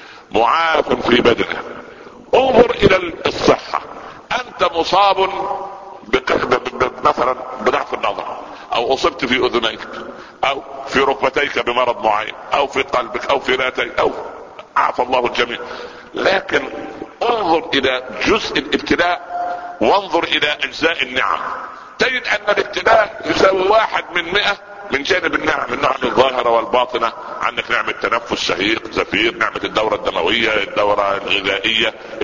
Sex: male